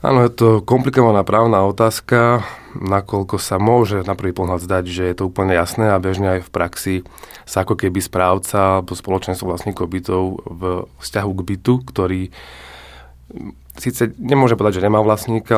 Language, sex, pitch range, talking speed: Slovak, male, 95-110 Hz, 160 wpm